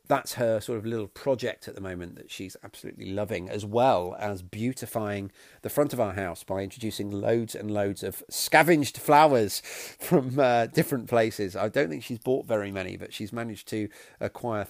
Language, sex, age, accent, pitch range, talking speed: English, male, 40-59, British, 105-130 Hz, 190 wpm